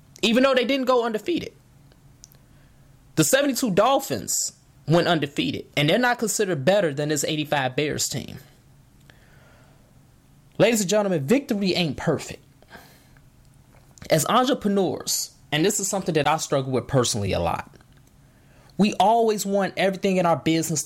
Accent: American